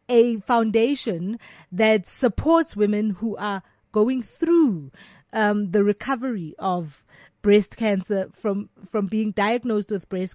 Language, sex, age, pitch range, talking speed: English, female, 30-49, 195-240 Hz, 120 wpm